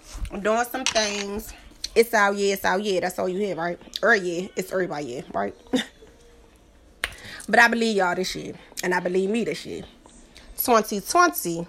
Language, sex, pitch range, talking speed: English, female, 185-255 Hz, 175 wpm